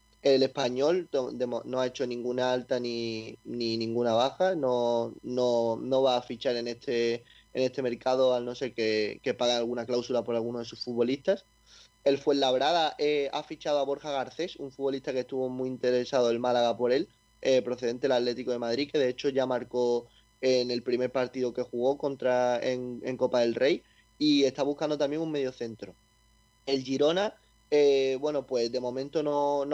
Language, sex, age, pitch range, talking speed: Spanish, male, 20-39, 120-140 Hz, 185 wpm